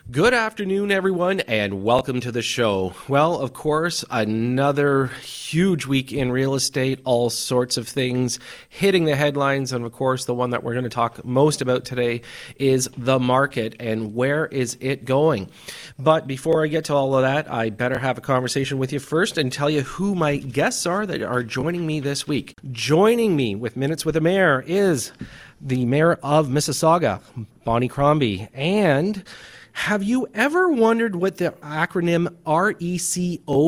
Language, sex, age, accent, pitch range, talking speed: English, male, 30-49, American, 130-185 Hz, 175 wpm